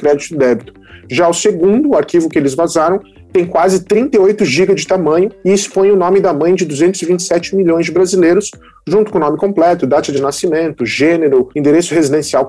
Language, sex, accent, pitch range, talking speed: English, male, Brazilian, 160-195 Hz, 185 wpm